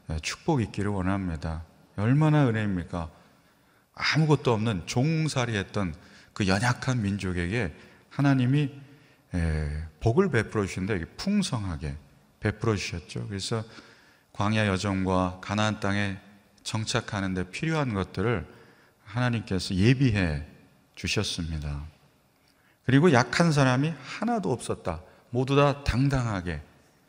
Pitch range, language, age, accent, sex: 90-125 Hz, Korean, 40-59, native, male